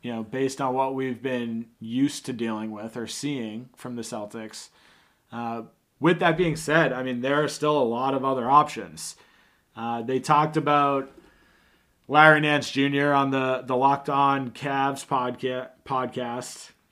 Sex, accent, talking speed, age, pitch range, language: male, American, 160 wpm, 30-49, 125-150 Hz, English